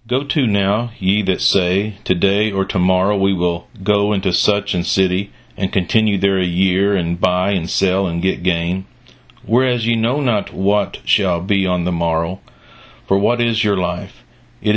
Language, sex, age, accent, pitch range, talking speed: English, male, 50-69, American, 90-105 Hz, 180 wpm